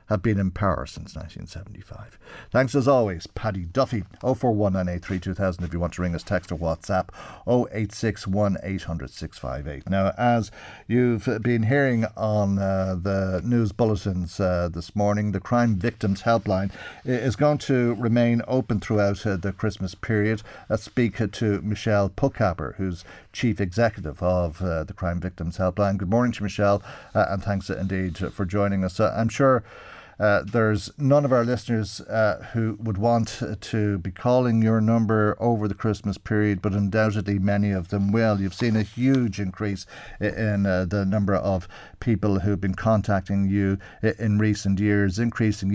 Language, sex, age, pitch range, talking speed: English, male, 50-69, 95-115 Hz, 165 wpm